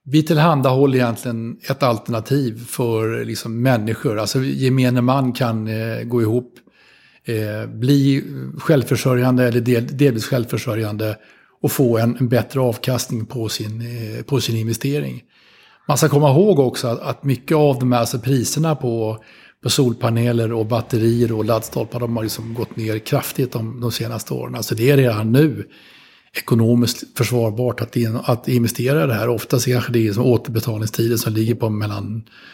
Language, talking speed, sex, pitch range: Swedish, 160 wpm, male, 115-130 Hz